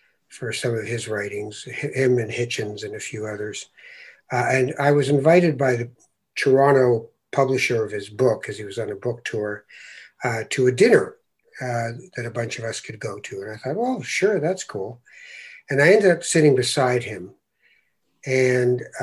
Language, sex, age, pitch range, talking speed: English, male, 60-79, 120-145 Hz, 185 wpm